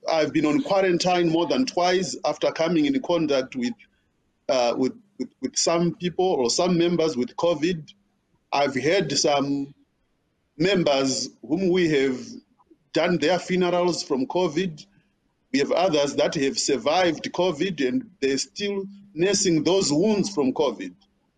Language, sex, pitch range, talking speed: English, male, 155-200 Hz, 140 wpm